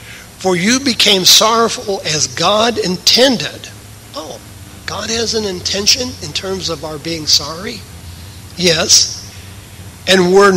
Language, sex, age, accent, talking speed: English, male, 60-79, American, 120 wpm